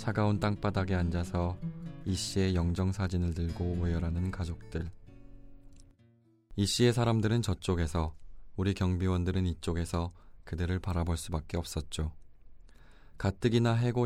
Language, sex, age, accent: Korean, male, 20-39, native